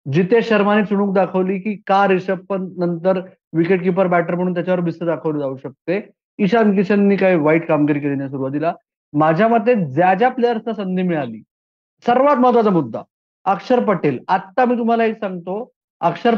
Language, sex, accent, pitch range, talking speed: Marathi, male, native, 155-200 Hz, 130 wpm